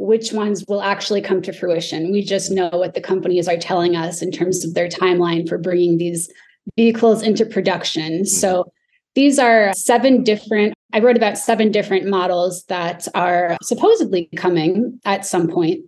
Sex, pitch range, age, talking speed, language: female, 180-225 Hz, 20-39, 170 wpm, English